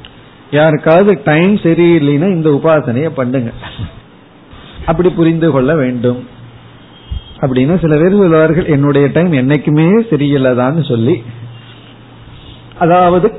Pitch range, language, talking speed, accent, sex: 130-175 Hz, Tamil, 80 wpm, native, male